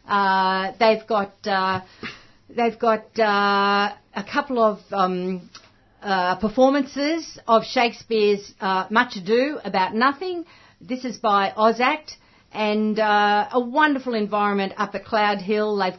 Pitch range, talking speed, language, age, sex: 195-245 Hz, 130 wpm, English, 50-69, female